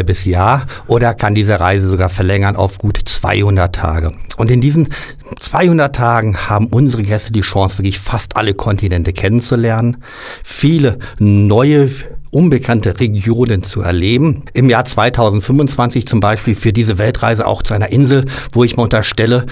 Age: 50-69